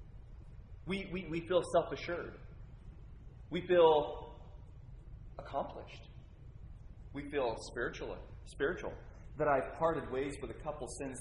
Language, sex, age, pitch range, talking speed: English, male, 30-49, 115-160 Hz, 100 wpm